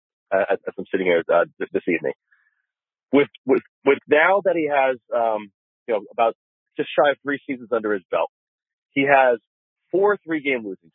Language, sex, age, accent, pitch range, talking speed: English, male, 30-49, American, 120-165 Hz, 180 wpm